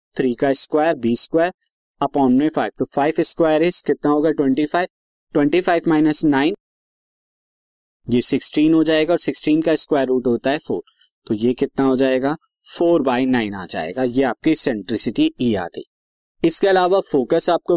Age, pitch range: 20-39, 135-175 Hz